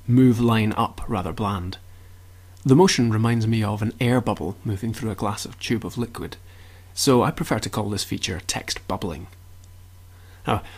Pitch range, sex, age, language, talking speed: 90-120 Hz, male, 30-49, English, 175 wpm